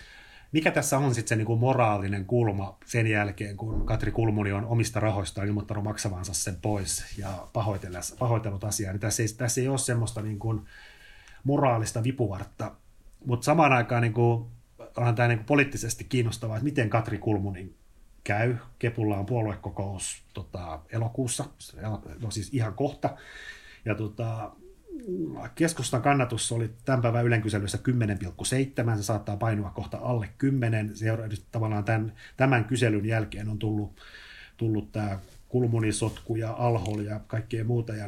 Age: 30-49